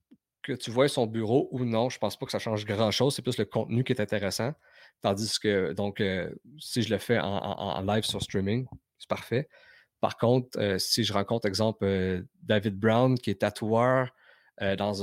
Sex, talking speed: male, 210 wpm